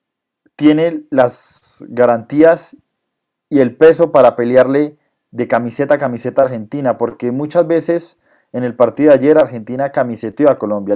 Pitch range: 125-150 Hz